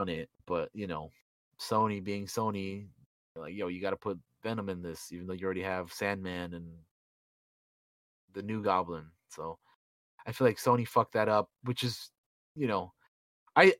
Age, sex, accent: 20-39, male, American